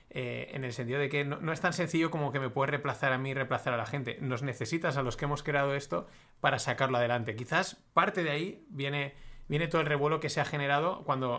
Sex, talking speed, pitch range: male, 255 wpm, 130-160 Hz